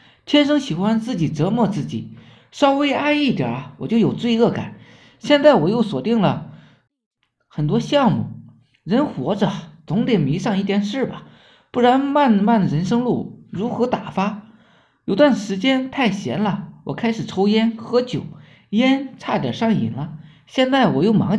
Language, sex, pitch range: Chinese, male, 165-230 Hz